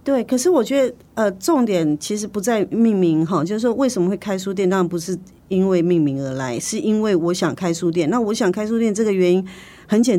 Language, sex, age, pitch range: Chinese, female, 40-59, 160-200 Hz